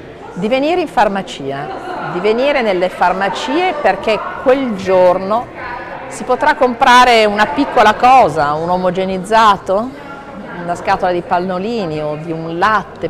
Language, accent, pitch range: Italian, native, 155-205 Hz